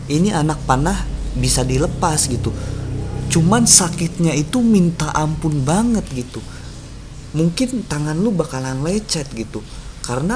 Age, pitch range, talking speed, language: 20-39, 115-160 Hz, 115 wpm, Indonesian